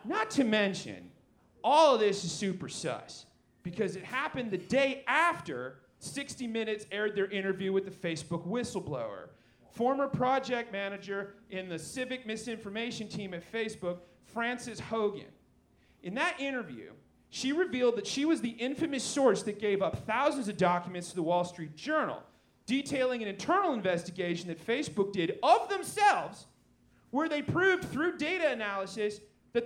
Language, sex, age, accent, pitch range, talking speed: English, male, 30-49, American, 200-275 Hz, 150 wpm